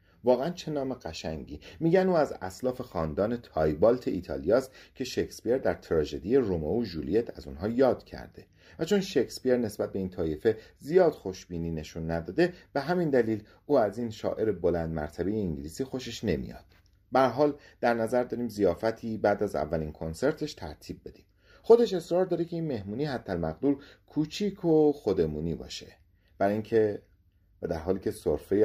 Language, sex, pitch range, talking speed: Persian, male, 85-125 Hz, 155 wpm